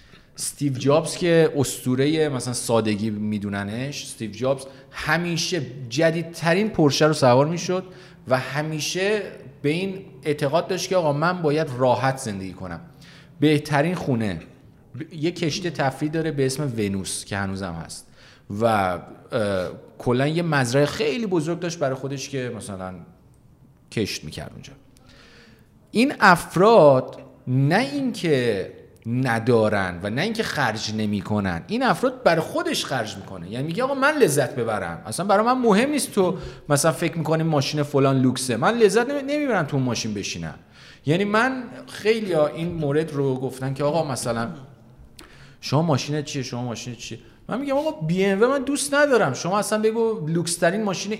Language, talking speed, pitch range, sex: Persian, 150 wpm, 130-175 Hz, male